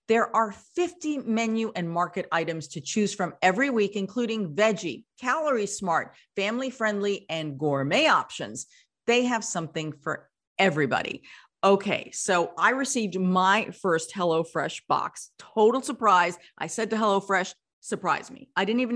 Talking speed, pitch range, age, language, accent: 140 wpm, 170-230 Hz, 40-59, English, American